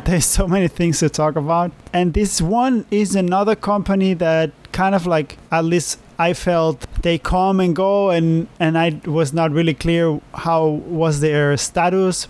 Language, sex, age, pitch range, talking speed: English, male, 20-39, 150-180 Hz, 175 wpm